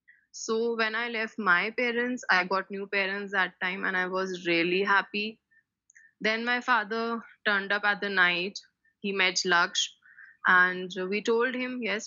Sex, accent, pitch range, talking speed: female, Indian, 180-220 Hz, 165 wpm